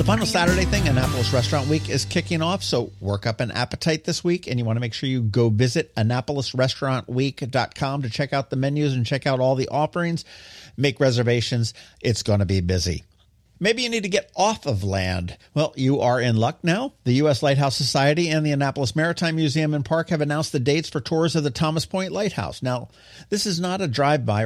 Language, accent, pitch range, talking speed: English, American, 110-150 Hz, 215 wpm